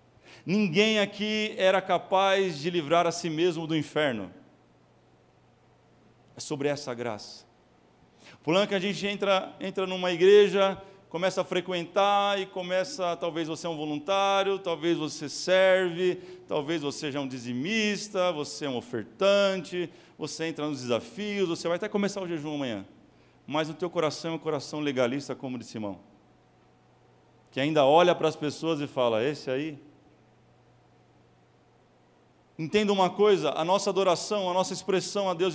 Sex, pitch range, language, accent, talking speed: male, 125-185 Hz, Portuguese, Brazilian, 150 wpm